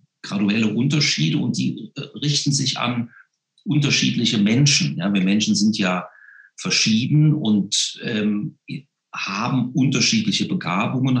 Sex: male